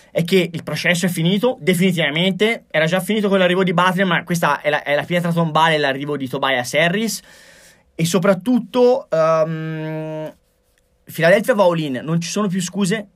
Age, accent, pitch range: 20-39, native, 155-195 Hz